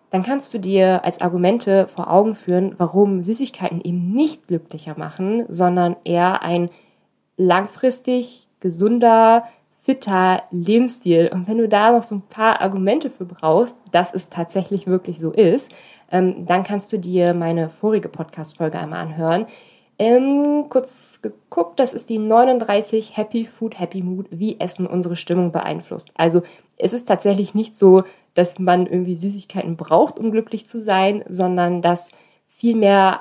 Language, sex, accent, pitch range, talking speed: German, female, German, 175-220 Hz, 150 wpm